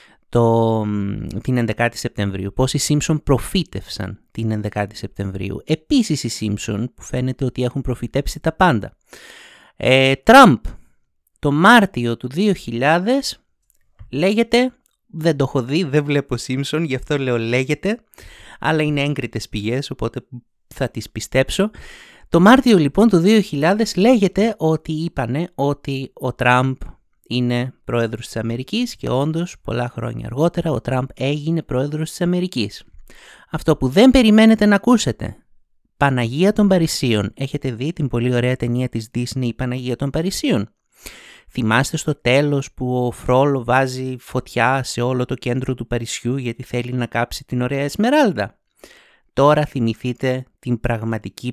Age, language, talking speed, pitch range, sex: 30-49, Greek, 135 wpm, 120-160 Hz, male